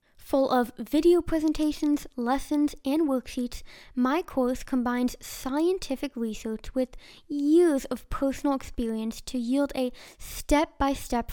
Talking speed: 110 wpm